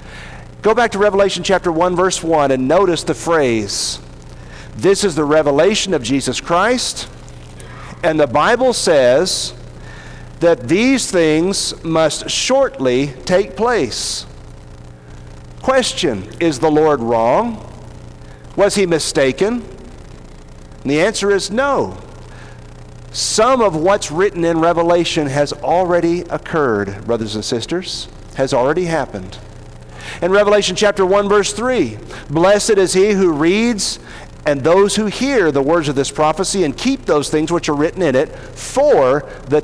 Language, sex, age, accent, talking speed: English, male, 50-69, American, 135 wpm